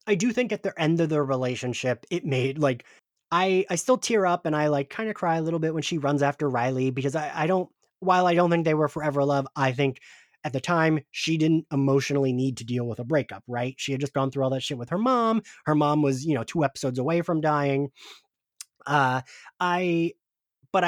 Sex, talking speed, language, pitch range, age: male, 235 wpm, English, 135-185 Hz, 30-49